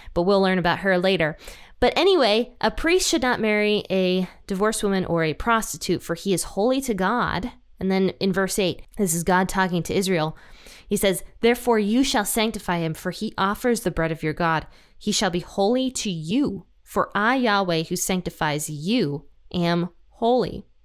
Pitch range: 175-215 Hz